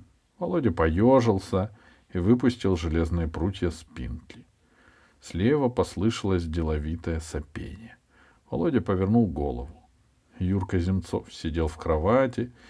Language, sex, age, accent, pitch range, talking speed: Russian, male, 50-69, native, 80-115 Hz, 90 wpm